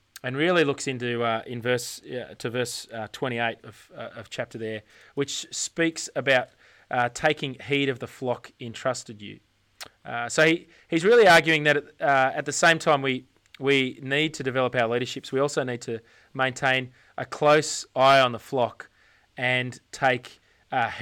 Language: English